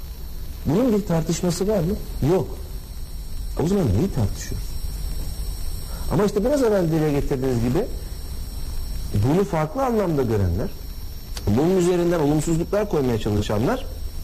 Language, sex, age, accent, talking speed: Turkish, male, 50-69, native, 110 wpm